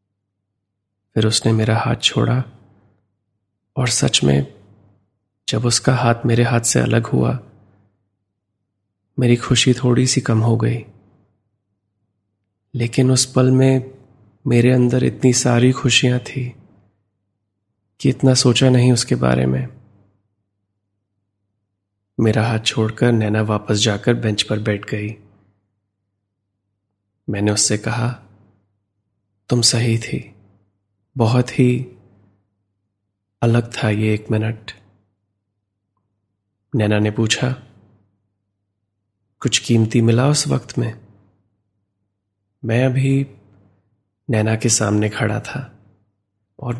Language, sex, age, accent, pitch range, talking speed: Hindi, male, 30-49, native, 100-120 Hz, 105 wpm